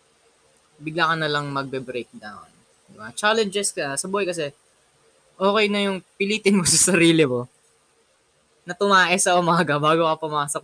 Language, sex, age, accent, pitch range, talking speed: Filipino, female, 20-39, native, 125-180 Hz, 145 wpm